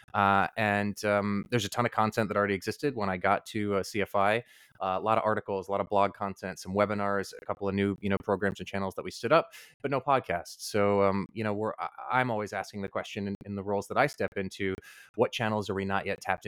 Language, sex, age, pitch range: English, male, 30-49, 95-105 Hz